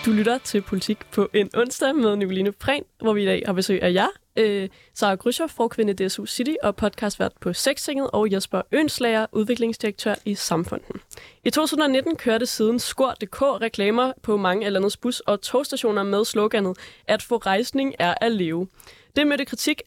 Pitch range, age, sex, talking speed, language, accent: 205-255 Hz, 20-39, female, 180 wpm, Danish, native